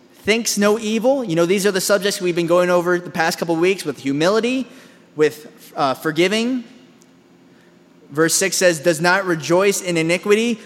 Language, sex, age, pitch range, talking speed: English, male, 20-39, 150-200 Hz, 170 wpm